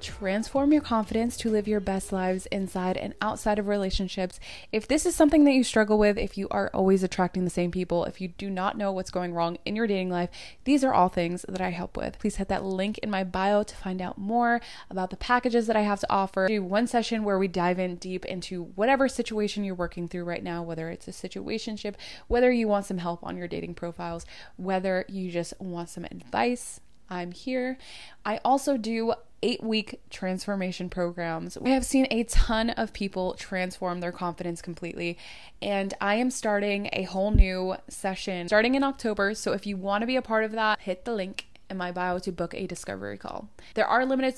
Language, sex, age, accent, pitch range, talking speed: English, female, 20-39, American, 180-225 Hz, 215 wpm